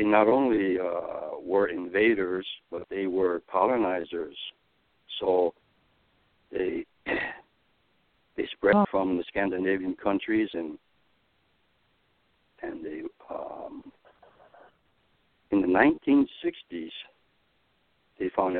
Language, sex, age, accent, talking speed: English, male, 60-79, American, 85 wpm